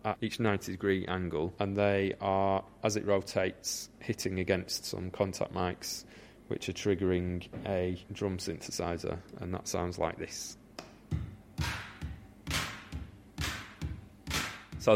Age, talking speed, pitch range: 30-49, 110 wpm, 95-110 Hz